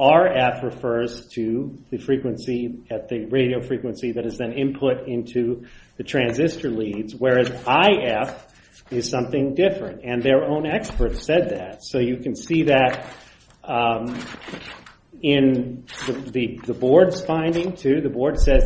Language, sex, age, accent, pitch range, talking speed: English, male, 40-59, American, 125-140 Hz, 140 wpm